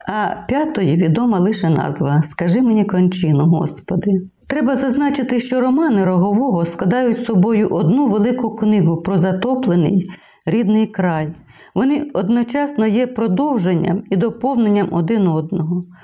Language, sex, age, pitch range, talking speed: Ukrainian, female, 50-69, 170-225 Hz, 115 wpm